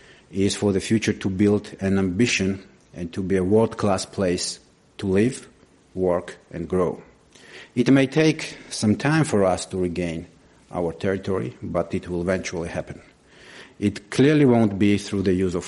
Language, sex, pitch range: English, male, 90-115 Hz